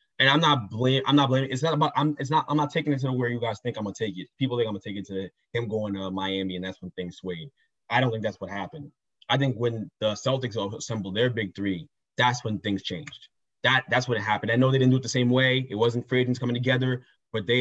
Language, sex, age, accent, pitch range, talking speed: English, male, 20-39, American, 115-180 Hz, 280 wpm